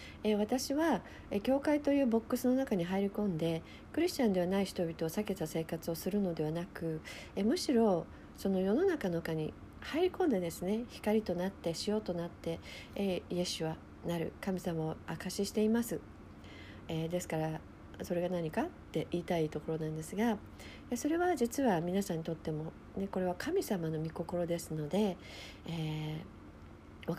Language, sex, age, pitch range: Japanese, female, 50-69, 165-220 Hz